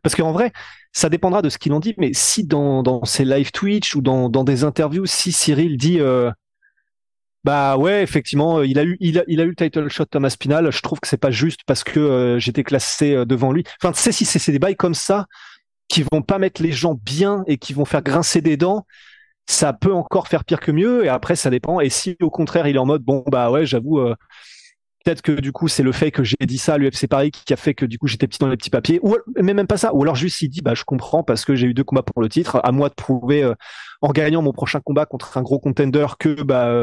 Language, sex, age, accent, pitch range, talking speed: French, male, 30-49, French, 135-175 Hz, 275 wpm